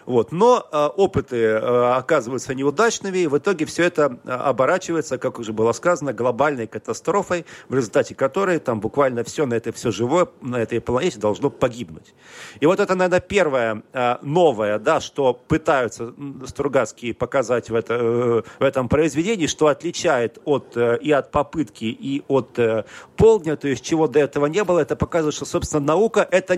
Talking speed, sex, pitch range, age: 140 wpm, male, 125-165 Hz, 40-59